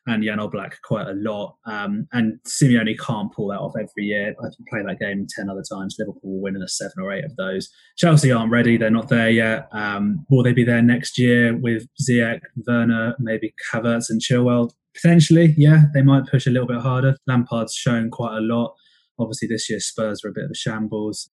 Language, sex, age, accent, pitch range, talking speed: English, male, 20-39, British, 115-145 Hz, 215 wpm